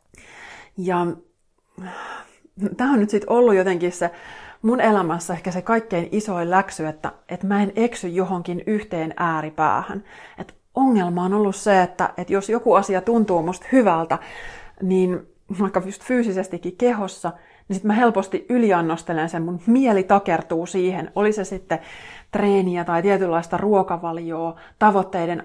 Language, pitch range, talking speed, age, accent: Finnish, 170-210 Hz, 140 wpm, 30-49, native